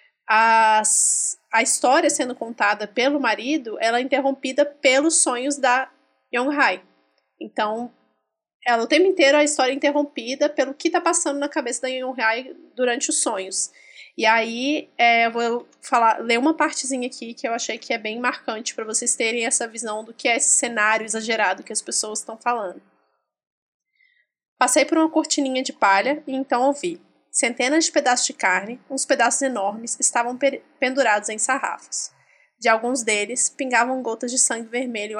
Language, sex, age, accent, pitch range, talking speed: Portuguese, female, 20-39, Brazilian, 230-290 Hz, 165 wpm